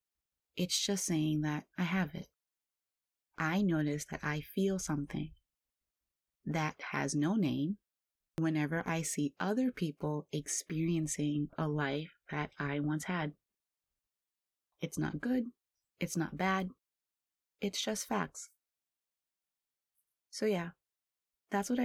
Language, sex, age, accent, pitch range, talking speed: English, female, 20-39, American, 150-195 Hz, 115 wpm